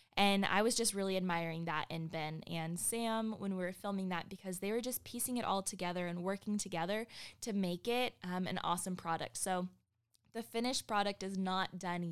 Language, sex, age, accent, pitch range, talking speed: English, female, 20-39, American, 180-220 Hz, 205 wpm